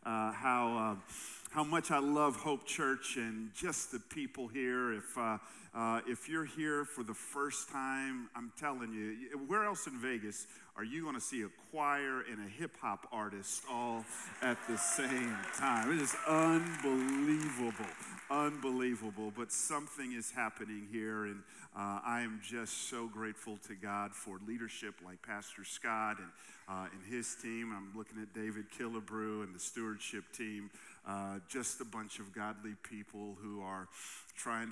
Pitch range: 105-125 Hz